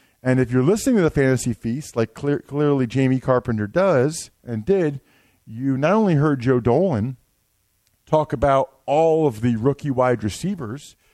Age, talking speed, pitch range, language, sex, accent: 40-59, 155 wpm, 125-175 Hz, English, male, American